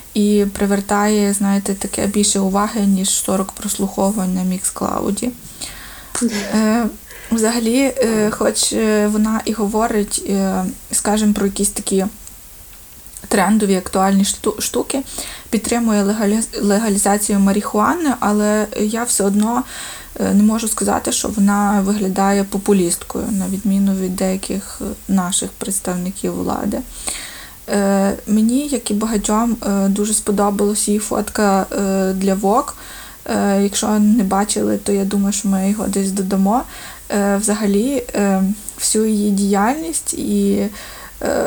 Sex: female